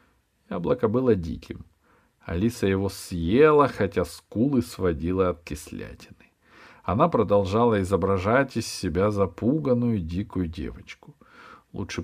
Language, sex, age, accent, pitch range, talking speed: Russian, male, 50-69, native, 85-115 Hz, 100 wpm